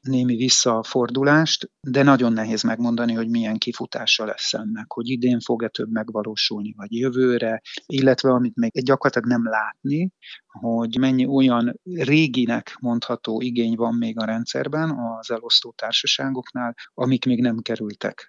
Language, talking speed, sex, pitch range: Hungarian, 135 wpm, male, 115-135 Hz